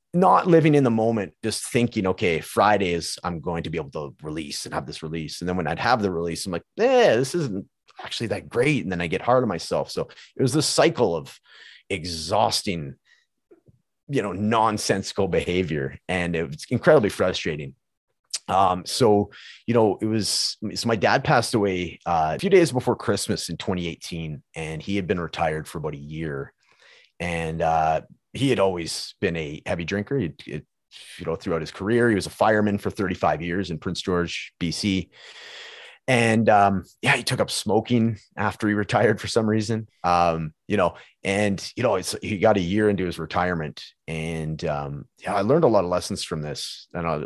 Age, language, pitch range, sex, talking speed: 30-49, English, 80-110 Hz, male, 195 wpm